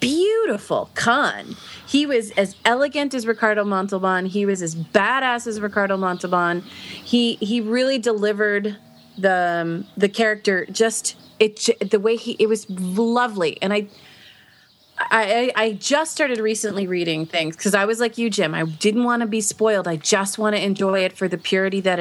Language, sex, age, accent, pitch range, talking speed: English, female, 30-49, American, 185-230 Hz, 170 wpm